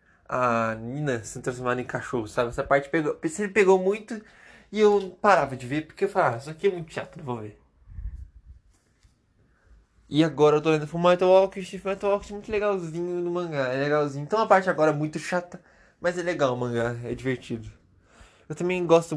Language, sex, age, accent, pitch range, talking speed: Portuguese, male, 20-39, Brazilian, 130-175 Hz, 190 wpm